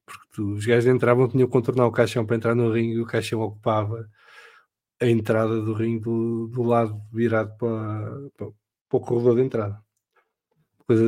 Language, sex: English, male